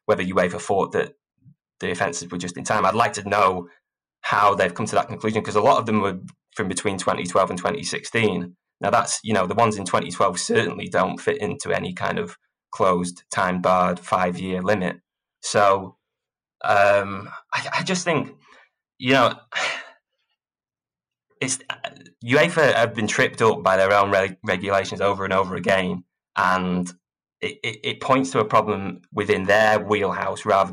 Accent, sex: British, male